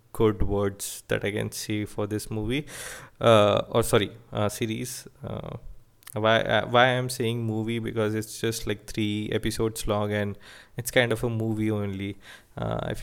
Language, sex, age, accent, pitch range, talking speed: English, male, 20-39, Indian, 100-115 Hz, 175 wpm